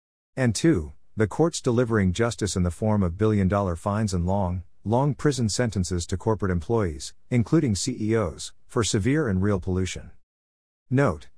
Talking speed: 150 wpm